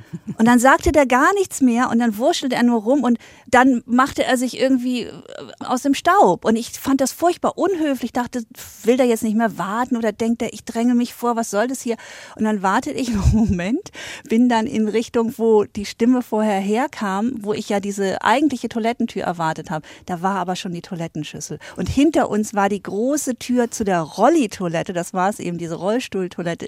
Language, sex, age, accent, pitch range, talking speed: German, female, 50-69, German, 195-250 Hz, 205 wpm